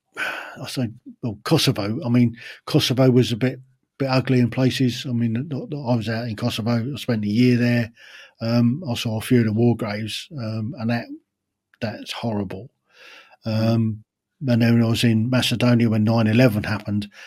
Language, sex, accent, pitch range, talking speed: English, male, British, 110-125 Hz, 180 wpm